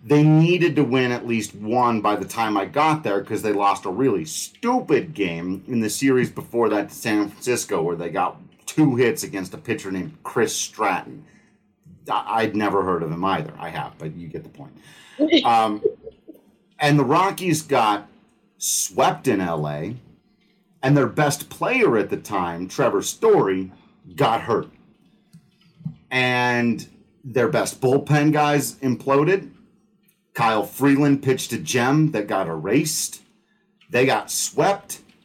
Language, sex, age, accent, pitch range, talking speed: English, male, 40-59, American, 110-165 Hz, 150 wpm